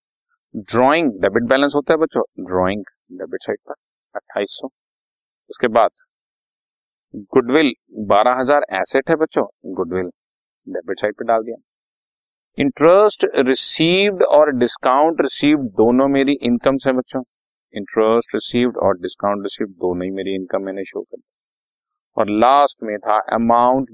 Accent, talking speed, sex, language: native, 130 wpm, male, Hindi